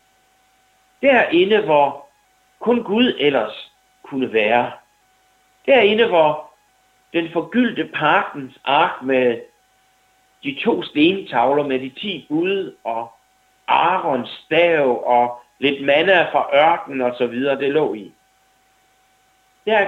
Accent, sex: native, male